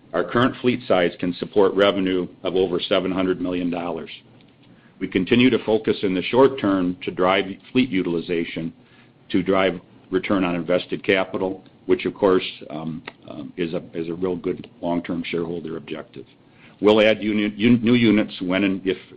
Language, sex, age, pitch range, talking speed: English, male, 50-69, 90-105 Hz, 165 wpm